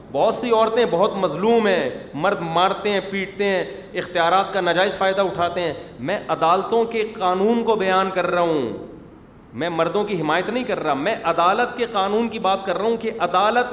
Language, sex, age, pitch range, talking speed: Urdu, male, 40-59, 170-215 Hz, 190 wpm